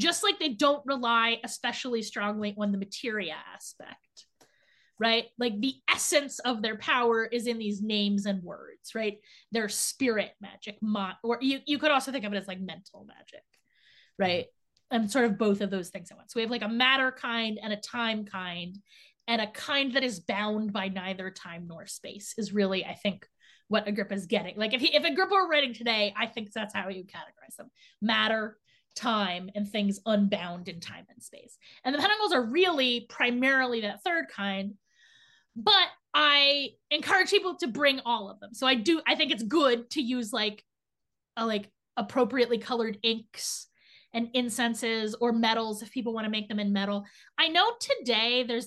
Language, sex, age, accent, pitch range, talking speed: English, female, 20-39, American, 205-255 Hz, 190 wpm